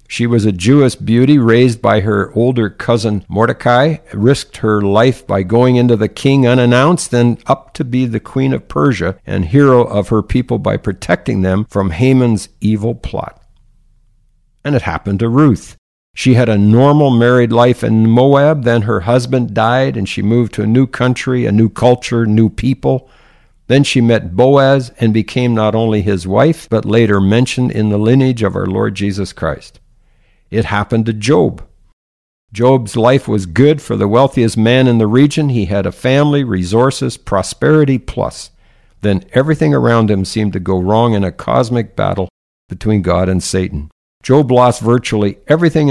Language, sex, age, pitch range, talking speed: English, male, 50-69, 105-130 Hz, 175 wpm